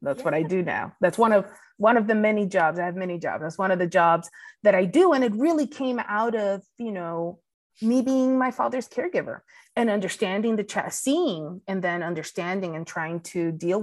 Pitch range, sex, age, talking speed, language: 170-220 Hz, female, 30-49, 215 wpm, English